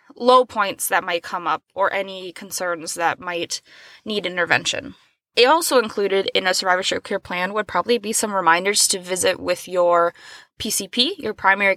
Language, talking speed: English, 170 wpm